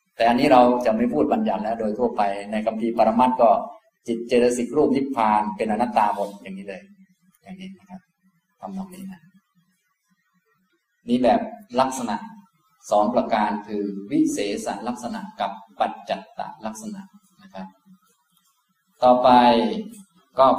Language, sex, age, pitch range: Thai, male, 20-39, 115-195 Hz